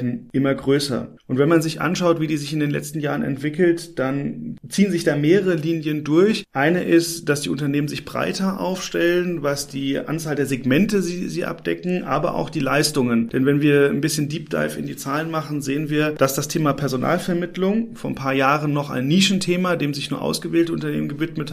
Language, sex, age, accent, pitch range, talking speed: German, male, 30-49, German, 140-165 Hz, 200 wpm